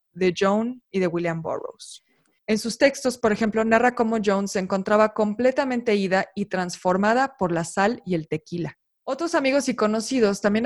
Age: 20-39